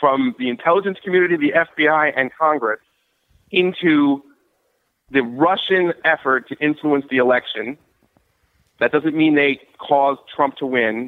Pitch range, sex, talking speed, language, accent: 140-180 Hz, male, 130 wpm, English, American